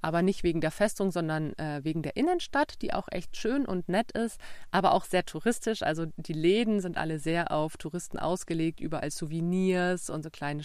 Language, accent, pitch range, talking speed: German, German, 155-215 Hz, 195 wpm